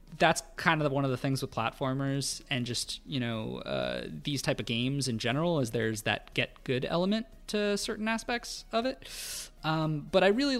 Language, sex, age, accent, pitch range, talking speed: English, male, 20-39, American, 125-165 Hz, 200 wpm